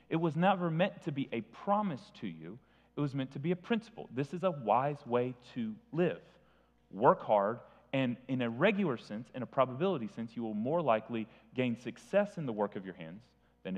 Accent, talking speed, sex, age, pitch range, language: American, 210 wpm, male, 30-49, 95-145 Hz, English